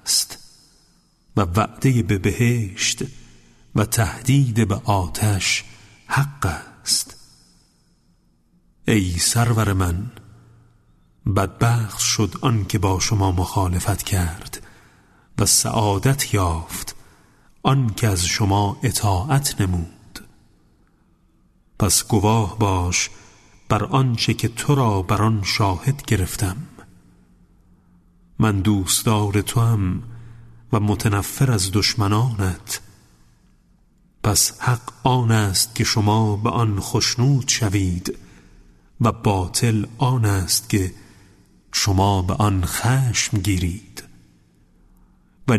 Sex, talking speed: male, 90 wpm